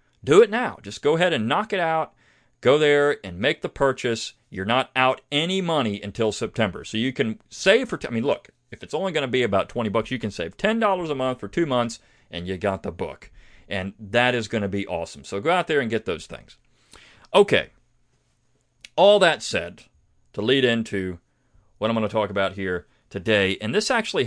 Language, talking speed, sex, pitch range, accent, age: English, 215 wpm, male, 105-145 Hz, American, 40-59